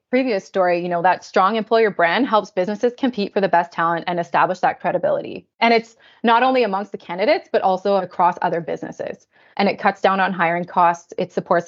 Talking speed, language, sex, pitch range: 205 wpm, English, female, 175-205 Hz